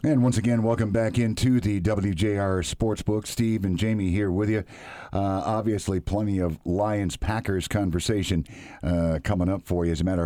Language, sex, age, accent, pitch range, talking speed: English, male, 50-69, American, 85-110 Hz, 175 wpm